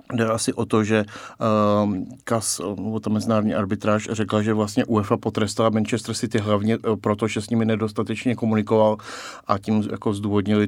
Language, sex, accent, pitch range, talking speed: Czech, male, native, 105-120 Hz, 165 wpm